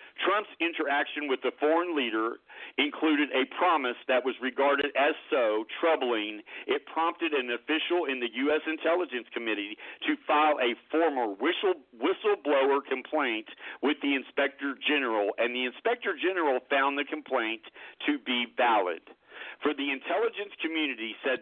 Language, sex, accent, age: English, male, American, 50-69